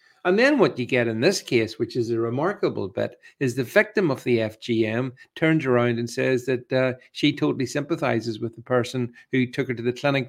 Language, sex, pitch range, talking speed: English, male, 125-170 Hz, 215 wpm